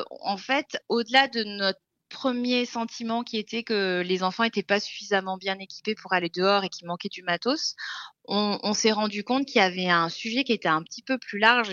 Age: 20-39